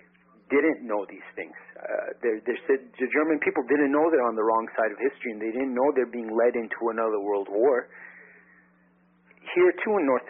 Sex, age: male, 40-59